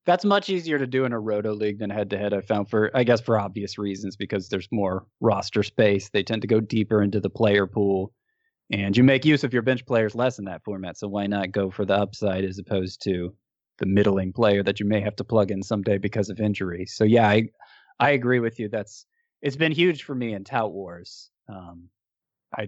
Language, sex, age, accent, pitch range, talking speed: English, male, 20-39, American, 100-115 Hz, 235 wpm